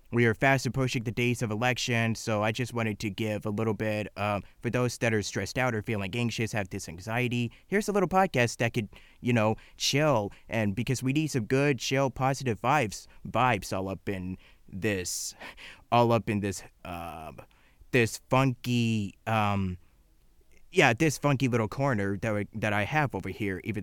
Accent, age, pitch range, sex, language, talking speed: American, 20-39, 105-135 Hz, male, English, 190 wpm